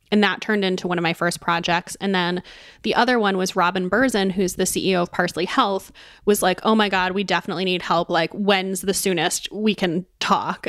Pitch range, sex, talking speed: 175-215 Hz, female, 220 wpm